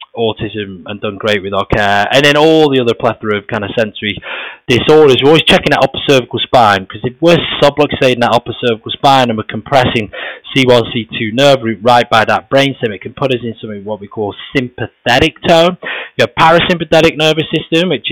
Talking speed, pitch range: 205 wpm, 105-130 Hz